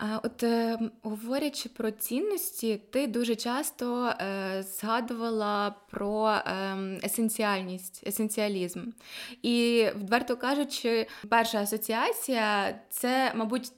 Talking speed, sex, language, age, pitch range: 85 wpm, female, Ukrainian, 20-39, 215-255 Hz